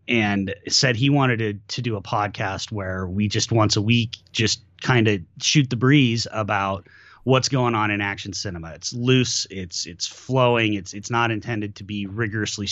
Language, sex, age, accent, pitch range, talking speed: English, male, 30-49, American, 95-120 Hz, 190 wpm